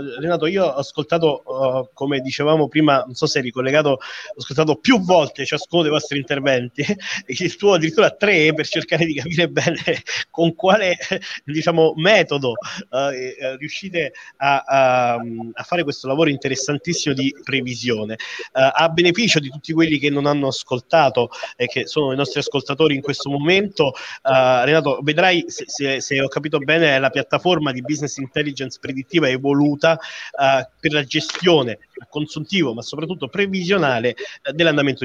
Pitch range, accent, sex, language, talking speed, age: 130-165 Hz, native, male, Italian, 155 wpm, 30-49